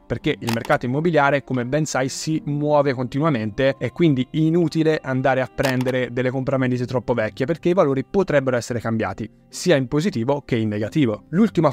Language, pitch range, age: Italian, 125-155 Hz, 20-39